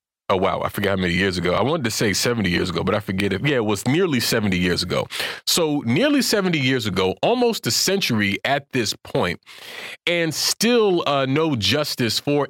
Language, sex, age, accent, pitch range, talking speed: English, male, 40-59, American, 100-145 Hz, 205 wpm